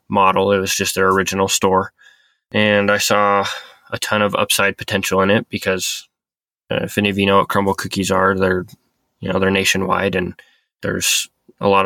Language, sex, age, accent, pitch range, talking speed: English, male, 20-39, American, 100-110 Hz, 185 wpm